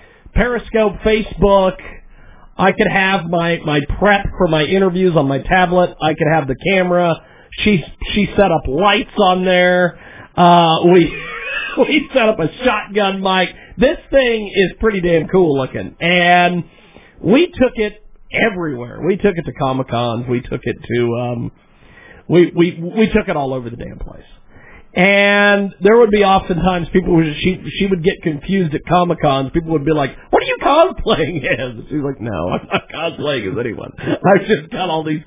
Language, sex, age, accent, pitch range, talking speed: English, male, 50-69, American, 150-210 Hz, 175 wpm